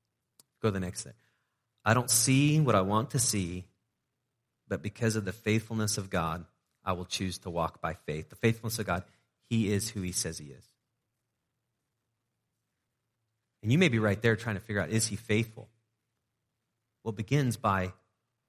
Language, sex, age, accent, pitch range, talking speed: English, male, 30-49, American, 100-125 Hz, 170 wpm